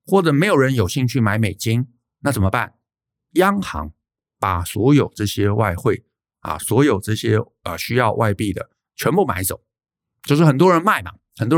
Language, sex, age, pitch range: Chinese, male, 50-69, 100-145 Hz